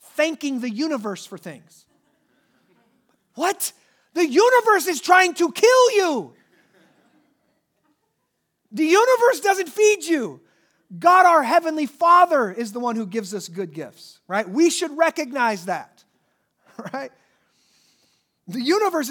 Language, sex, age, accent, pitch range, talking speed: English, male, 40-59, American, 230-315 Hz, 120 wpm